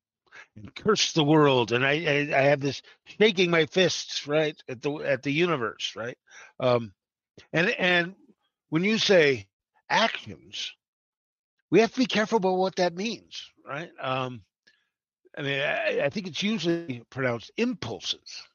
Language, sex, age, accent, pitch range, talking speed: English, male, 50-69, American, 120-175 Hz, 150 wpm